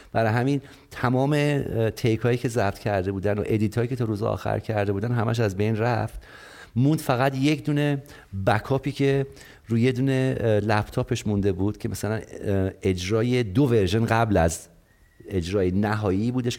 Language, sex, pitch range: English, male, 95-120 Hz